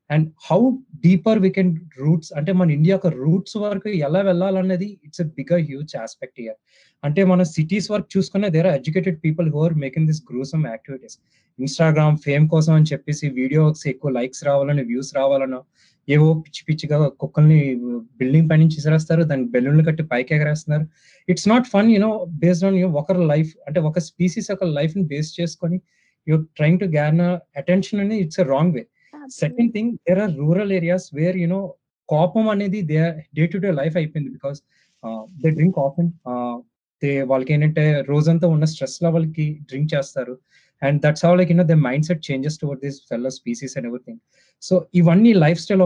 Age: 20-39